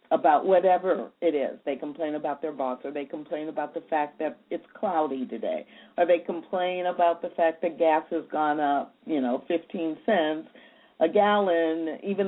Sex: female